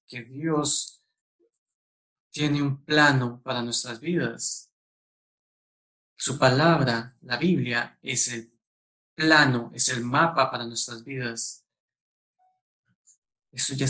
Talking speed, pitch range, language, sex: 100 wpm, 120-150 Hz, English, male